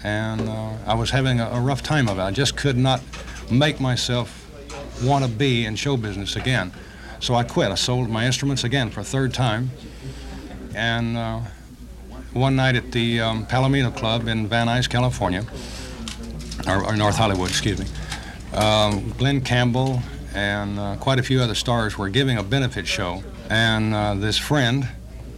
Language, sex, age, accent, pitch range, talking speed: English, male, 60-79, American, 100-125 Hz, 175 wpm